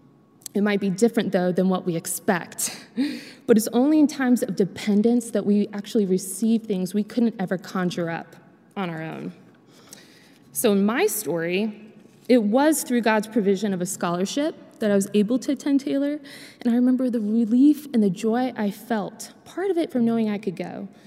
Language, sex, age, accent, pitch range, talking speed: English, female, 20-39, American, 195-250 Hz, 190 wpm